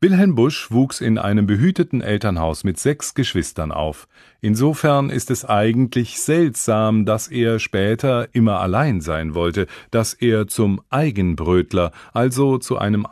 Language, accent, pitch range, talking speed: English, German, 95-135 Hz, 135 wpm